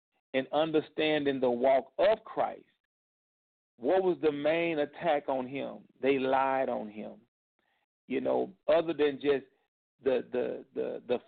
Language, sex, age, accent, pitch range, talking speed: English, male, 50-69, American, 130-180 Hz, 140 wpm